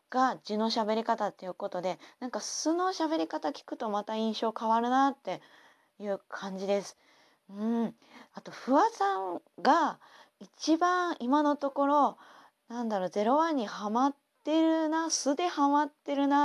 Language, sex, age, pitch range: Japanese, female, 20-39, 200-260 Hz